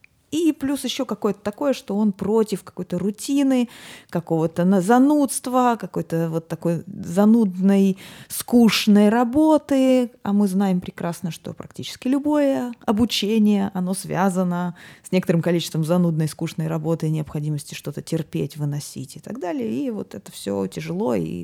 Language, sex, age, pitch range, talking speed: Russian, female, 20-39, 170-240 Hz, 130 wpm